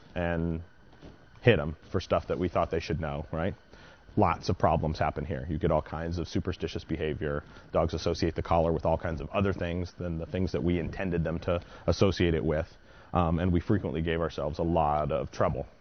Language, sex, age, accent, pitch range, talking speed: English, male, 30-49, American, 80-100 Hz, 210 wpm